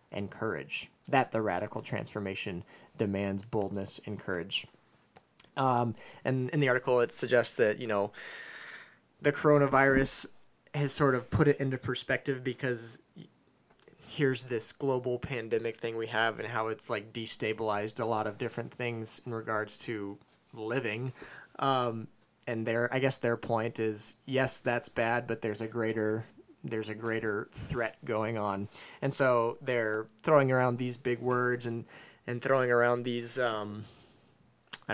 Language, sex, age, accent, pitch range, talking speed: English, male, 20-39, American, 110-130 Hz, 150 wpm